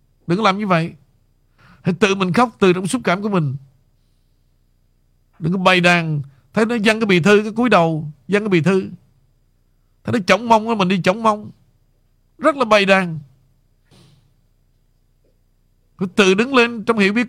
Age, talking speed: 50-69, 175 wpm